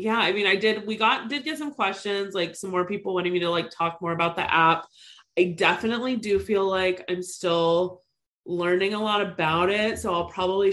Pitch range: 160-195 Hz